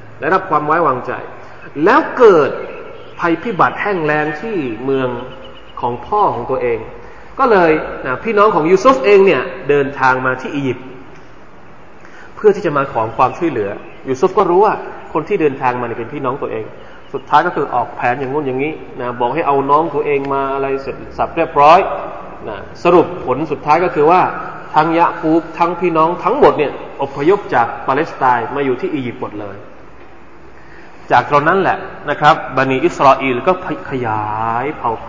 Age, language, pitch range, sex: 20-39, Thai, 130-175 Hz, male